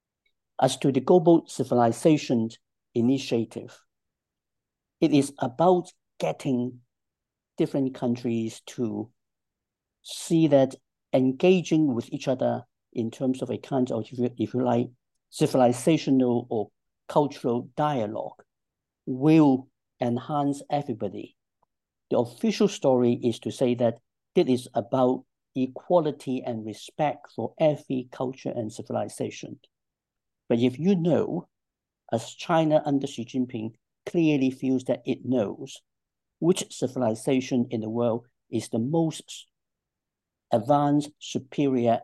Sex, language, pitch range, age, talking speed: male, English, 115-145 Hz, 60-79, 110 wpm